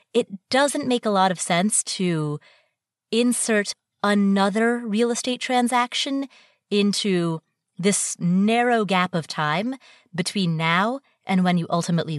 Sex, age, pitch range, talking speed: female, 30-49, 165-225 Hz, 125 wpm